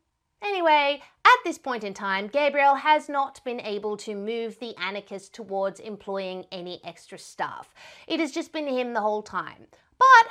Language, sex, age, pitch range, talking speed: English, female, 30-49, 210-315 Hz, 170 wpm